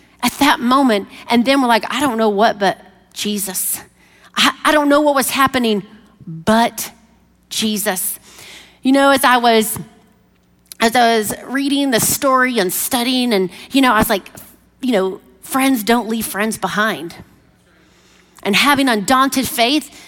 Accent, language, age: American, English, 40-59